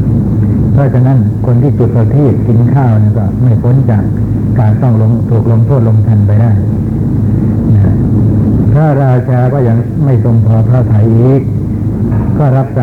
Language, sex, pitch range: Thai, male, 110-130 Hz